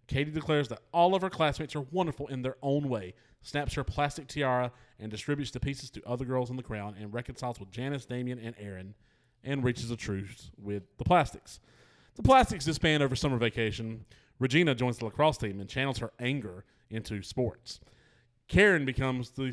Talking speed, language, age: 185 wpm, English, 30-49